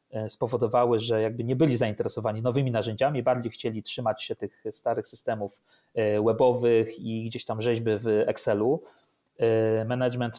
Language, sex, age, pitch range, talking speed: Polish, male, 30-49, 110-150 Hz, 135 wpm